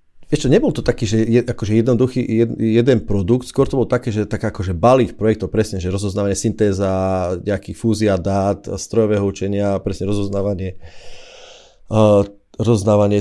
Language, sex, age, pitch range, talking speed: Slovak, male, 30-49, 95-115 Hz, 140 wpm